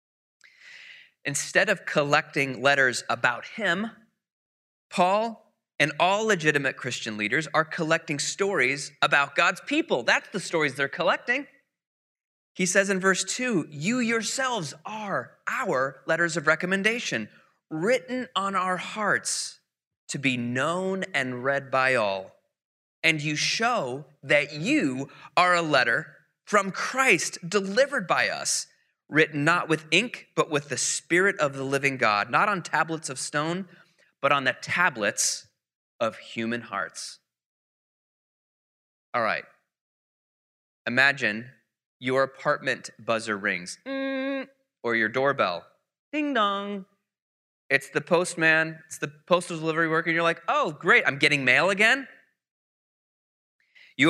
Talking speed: 125 wpm